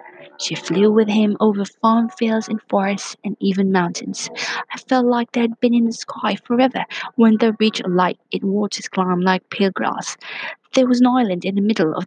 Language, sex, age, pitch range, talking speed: English, female, 20-39, 180-225 Hz, 205 wpm